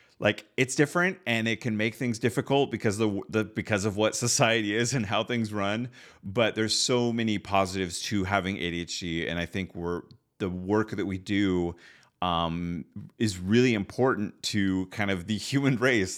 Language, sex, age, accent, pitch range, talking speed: English, male, 30-49, American, 90-110 Hz, 180 wpm